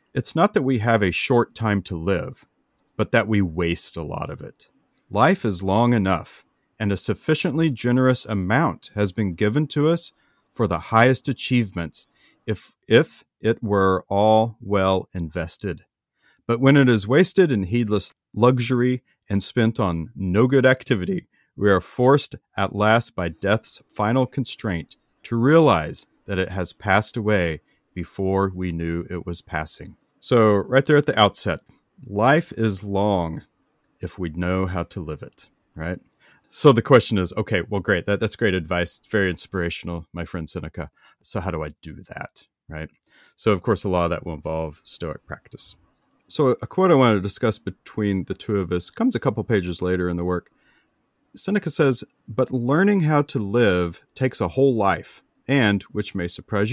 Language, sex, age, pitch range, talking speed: English, male, 40-59, 90-120 Hz, 175 wpm